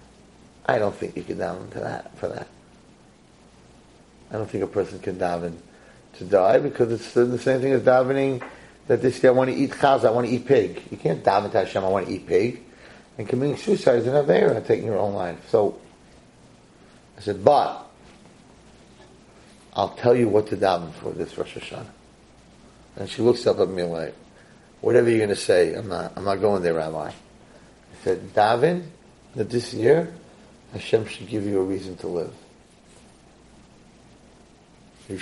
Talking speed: 180 wpm